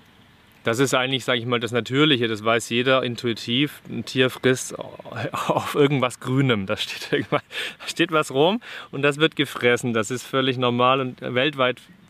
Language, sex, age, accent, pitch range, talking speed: German, male, 30-49, German, 110-130 Hz, 160 wpm